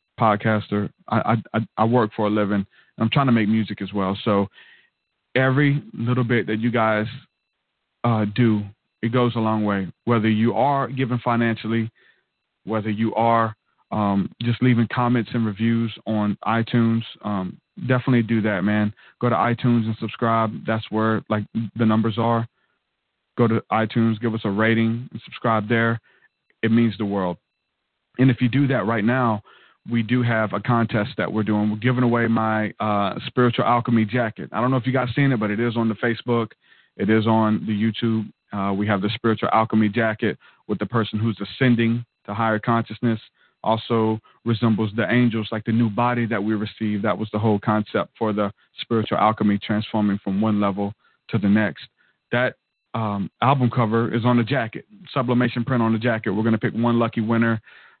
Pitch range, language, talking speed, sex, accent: 110-120 Hz, English, 185 wpm, male, American